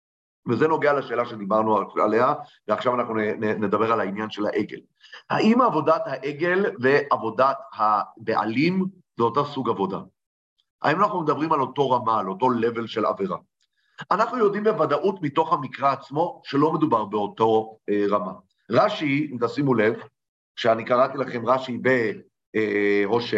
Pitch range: 120-170 Hz